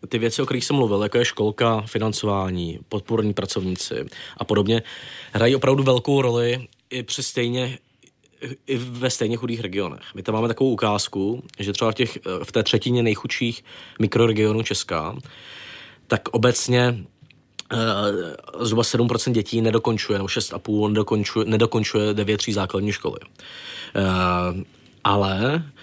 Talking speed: 130 wpm